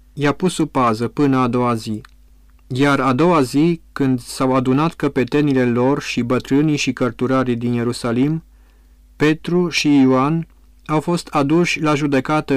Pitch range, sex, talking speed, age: 125-150 Hz, male, 150 wpm, 30-49